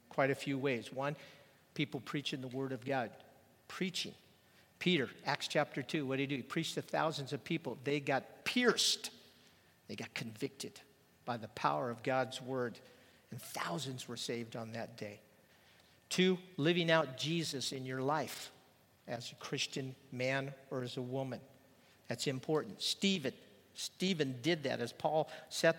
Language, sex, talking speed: English, male, 160 wpm